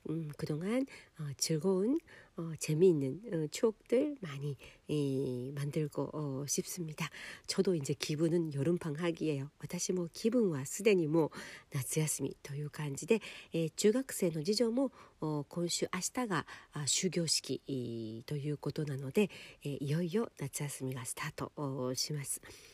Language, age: Korean, 40-59